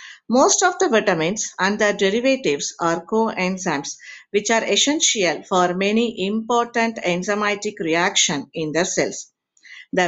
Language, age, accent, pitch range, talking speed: English, 50-69, Indian, 175-235 Hz, 125 wpm